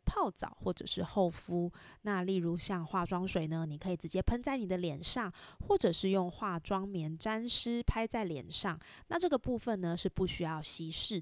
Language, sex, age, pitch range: Chinese, female, 20-39, 175-225 Hz